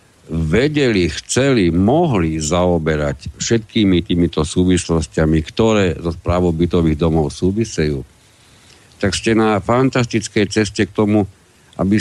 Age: 50-69